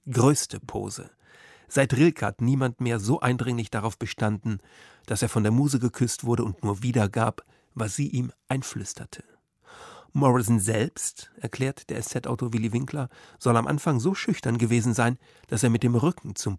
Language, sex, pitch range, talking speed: German, male, 110-135 Hz, 165 wpm